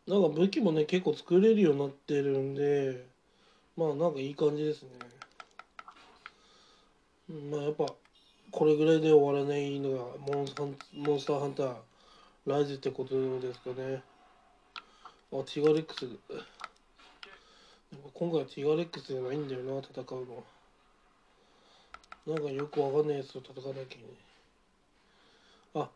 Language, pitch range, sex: Japanese, 135-165 Hz, male